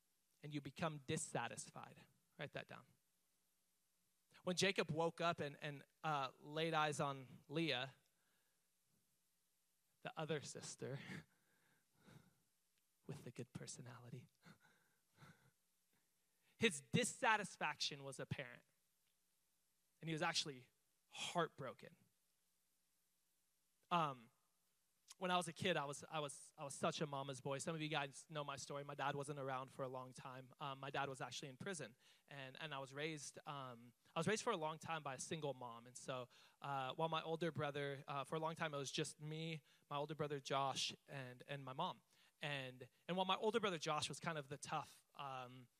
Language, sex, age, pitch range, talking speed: English, male, 20-39, 130-160 Hz, 165 wpm